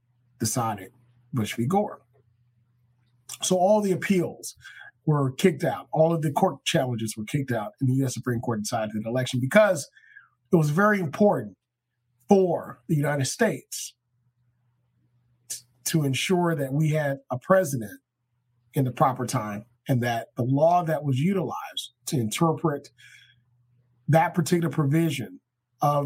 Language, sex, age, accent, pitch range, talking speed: English, male, 40-59, American, 120-155 Hz, 145 wpm